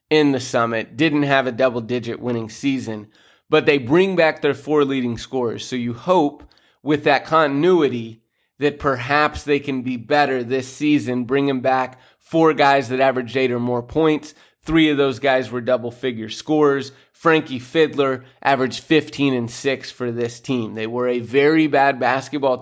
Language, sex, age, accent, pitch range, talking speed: English, male, 20-39, American, 125-150 Hz, 165 wpm